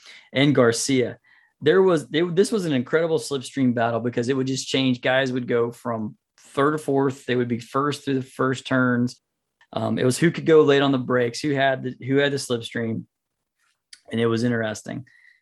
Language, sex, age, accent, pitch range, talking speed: English, male, 20-39, American, 120-150 Hz, 195 wpm